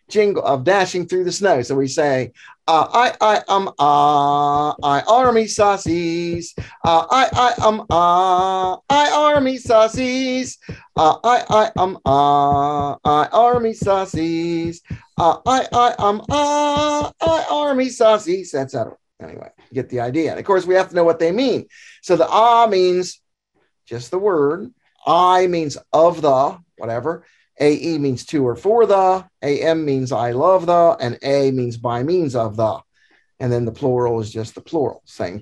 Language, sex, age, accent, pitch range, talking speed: English, male, 50-69, American, 145-220 Hz, 180 wpm